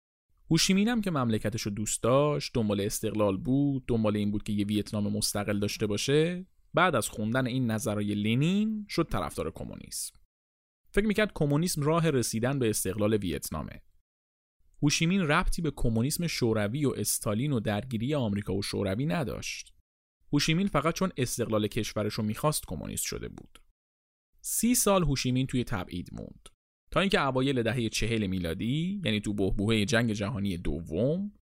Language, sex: Persian, male